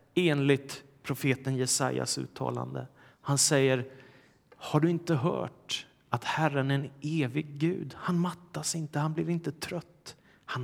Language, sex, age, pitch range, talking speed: Swedish, male, 30-49, 135-170 Hz, 135 wpm